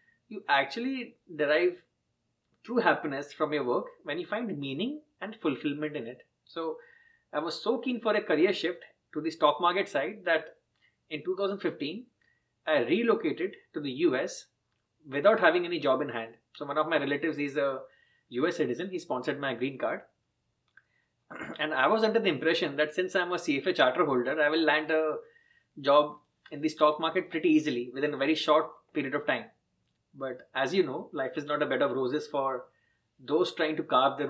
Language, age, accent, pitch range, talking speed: English, 30-49, Indian, 140-185 Hz, 185 wpm